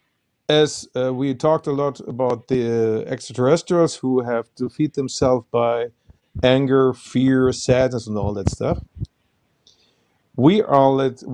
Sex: male